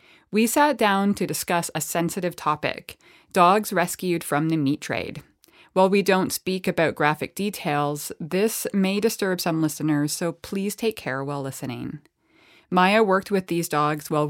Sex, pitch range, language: female, 150-190 Hz, English